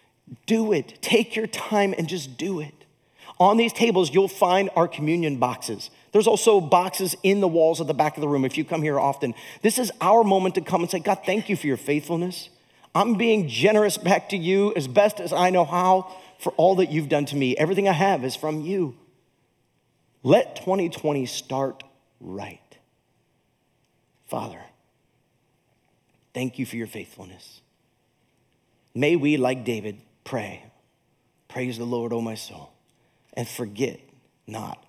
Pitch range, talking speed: 110-175 Hz, 165 wpm